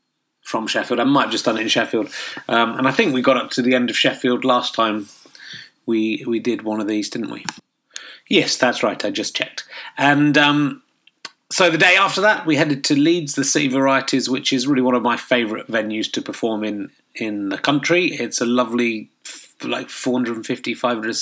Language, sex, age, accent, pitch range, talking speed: English, male, 30-49, British, 115-145 Hz, 205 wpm